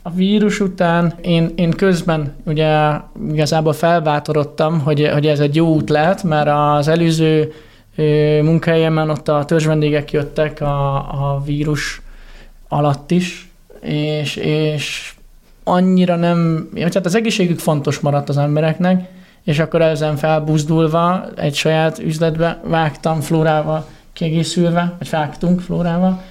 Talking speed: 120 wpm